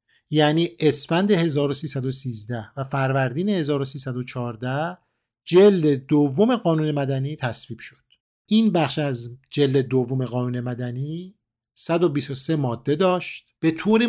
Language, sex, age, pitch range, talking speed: Persian, male, 50-69, 130-175 Hz, 100 wpm